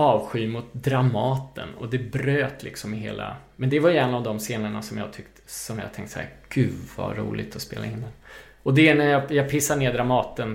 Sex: male